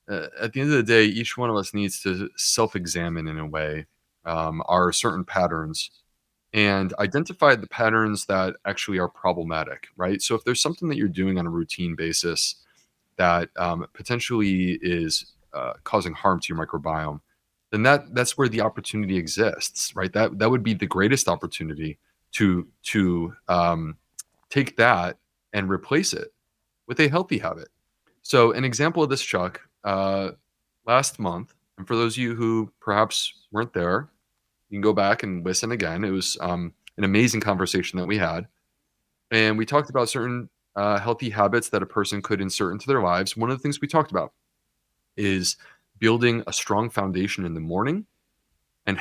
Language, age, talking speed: English, 30-49, 175 wpm